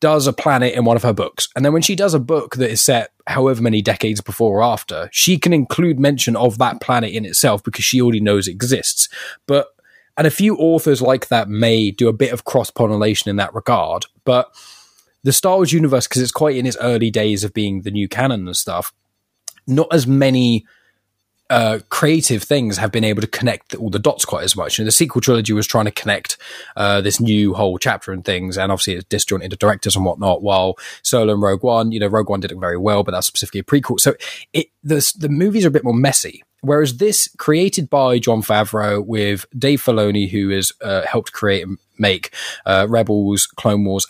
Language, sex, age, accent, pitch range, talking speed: English, male, 10-29, British, 105-135 Hz, 225 wpm